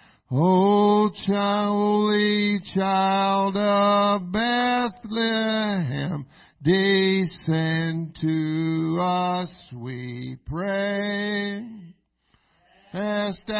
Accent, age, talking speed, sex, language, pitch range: American, 50-69, 55 wpm, male, English, 160-210 Hz